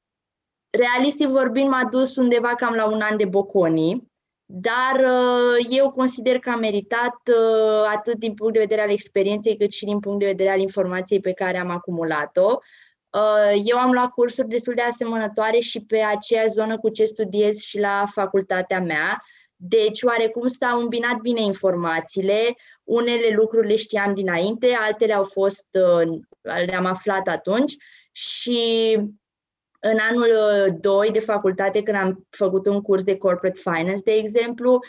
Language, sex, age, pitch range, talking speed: Romanian, female, 20-39, 190-235 Hz, 155 wpm